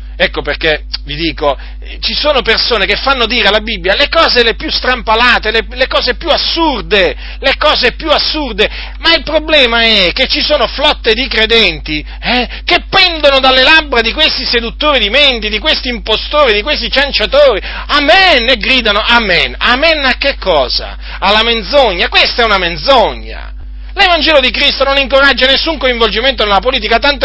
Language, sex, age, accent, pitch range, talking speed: Italian, male, 40-59, native, 210-290 Hz, 165 wpm